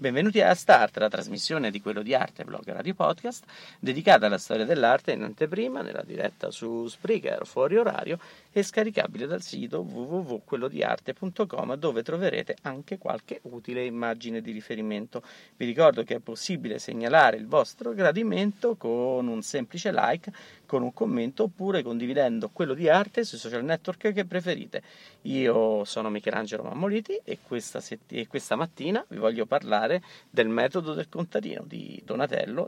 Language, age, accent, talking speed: Italian, 40-59, native, 150 wpm